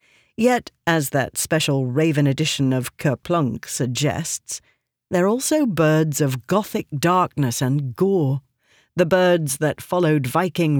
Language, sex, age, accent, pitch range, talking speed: English, female, 50-69, British, 135-185 Hz, 130 wpm